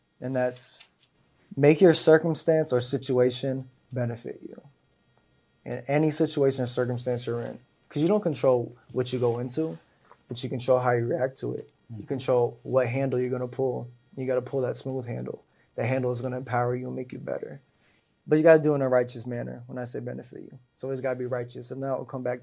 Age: 20-39